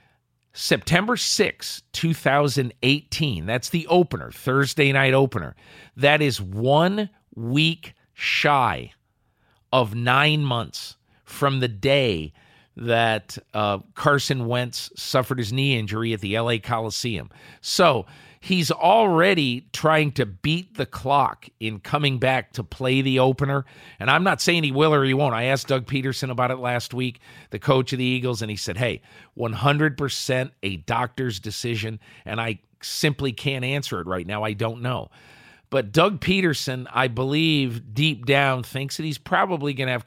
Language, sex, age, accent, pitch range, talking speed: English, male, 50-69, American, 115-145 Hz, 155 wpm